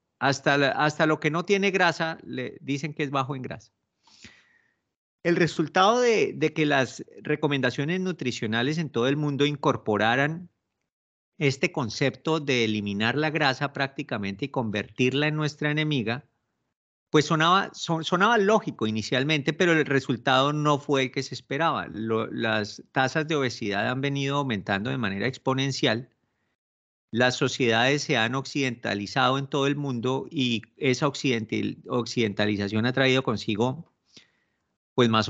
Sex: male